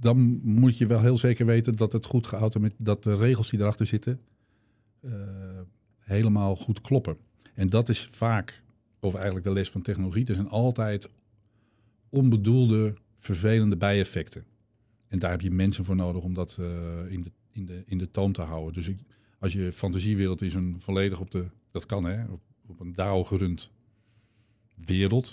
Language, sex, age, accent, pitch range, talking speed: Dutch, male, 50-69, Dutch, 95-110 Hz, 180 wpm